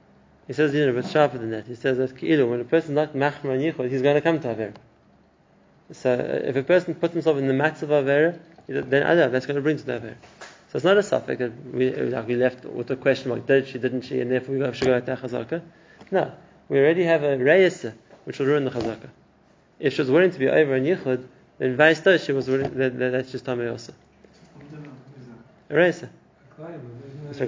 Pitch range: 130-150 Hz